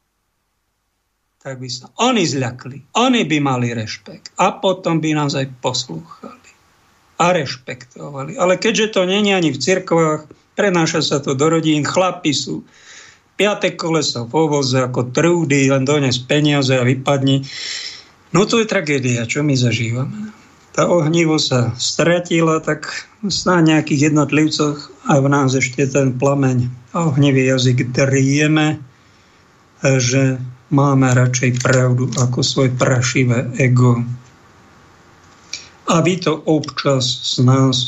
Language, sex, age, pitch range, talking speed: Slovak, male, 50-69, 125-165 Hz, 130 wpm